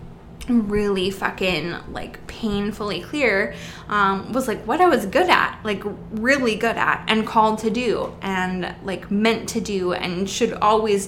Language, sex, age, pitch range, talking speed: English, female, 10-29, 190-225 Hz, 155 wpm